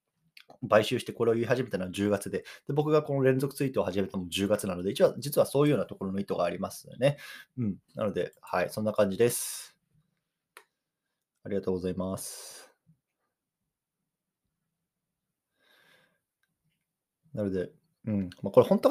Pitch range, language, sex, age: 100-160 Hz, Japanese, male, 20-39